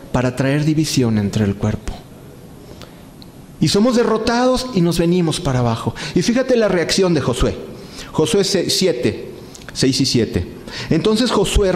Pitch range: 140-205 Hz